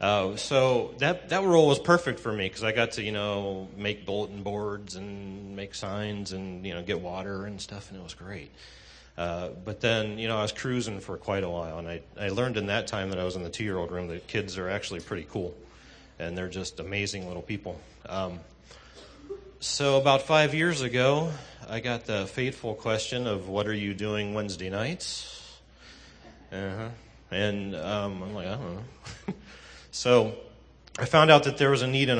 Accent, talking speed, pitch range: American, 200 wpm, 90-110 Hz